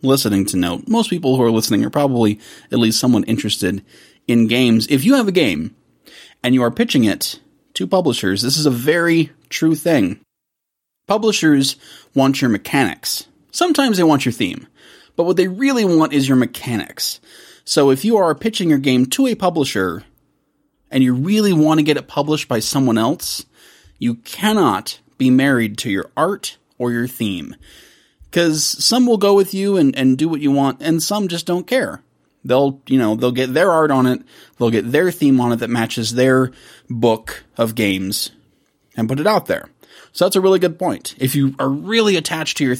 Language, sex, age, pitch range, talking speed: English, male, 30-49, 125-165 Hz, 195 wpm